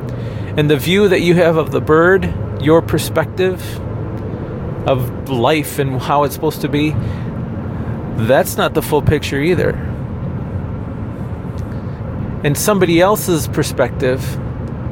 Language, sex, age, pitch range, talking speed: English, male, 40-59, 115-155 Hz, 115 wpm